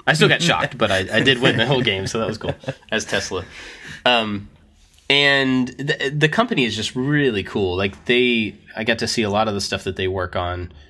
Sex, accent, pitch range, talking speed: male, American, 85-115 Hz, 230 wpm